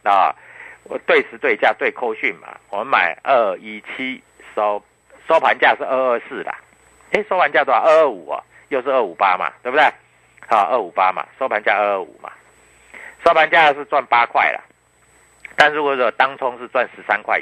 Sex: male